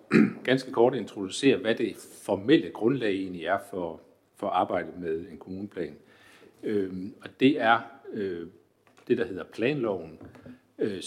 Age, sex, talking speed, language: 60-79, male, 140 wpm, Danish